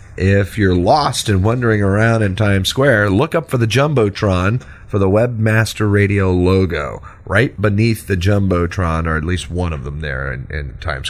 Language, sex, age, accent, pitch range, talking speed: English, male, 40-59, American, 85-105 Hz, 180 wpm